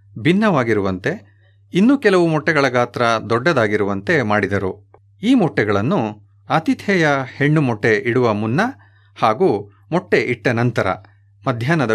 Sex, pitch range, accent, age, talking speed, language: male, 105-155 Hz, native, 30-49, 95 wpm, Kannada